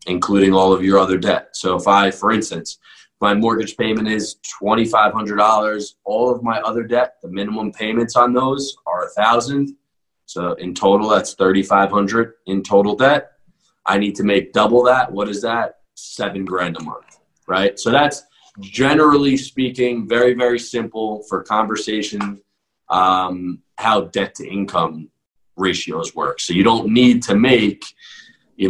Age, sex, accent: 20-39, male, American